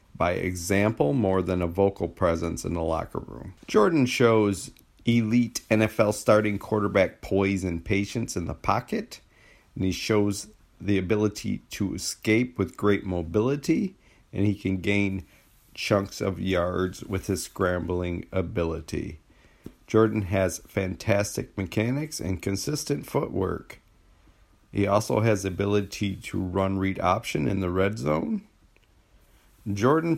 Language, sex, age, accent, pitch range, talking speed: English, male, 40-59, American, 95-110 Hz, 130 wpm